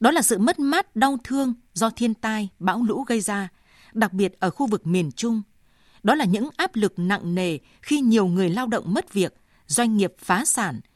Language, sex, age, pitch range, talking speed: Vietnamese, female, 20-39, 190-240 Hz, 215 wpm